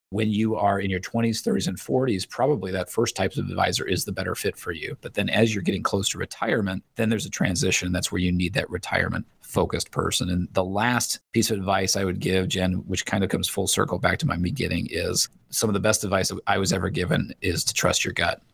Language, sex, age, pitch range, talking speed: English, male, 30-49, 95-110 Hz, 245 wpm